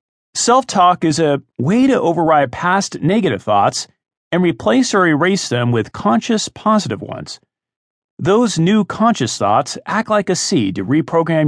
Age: 40-59